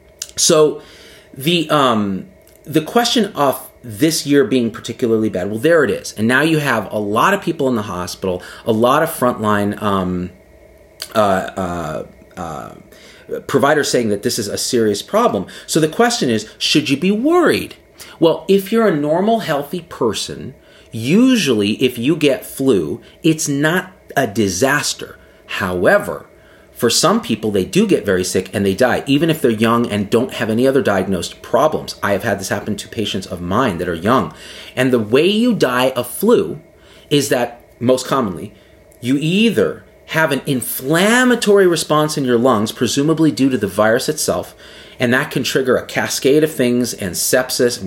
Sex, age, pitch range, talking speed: male, 40-59, 110-155 Hz, 175 wpm